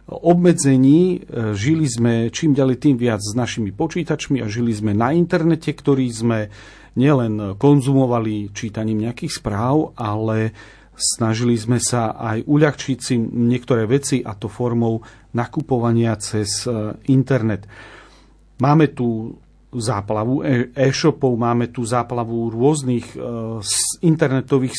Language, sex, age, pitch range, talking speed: Slovak, male, 40-59, 115-145 Hz, 110 wpm